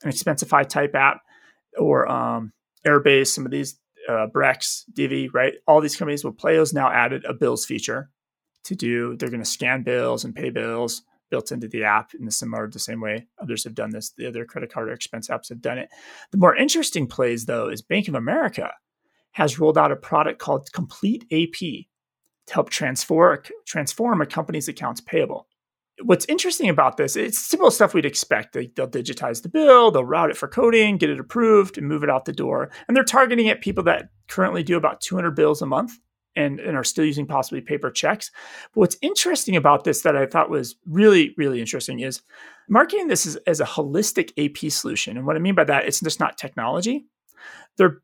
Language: English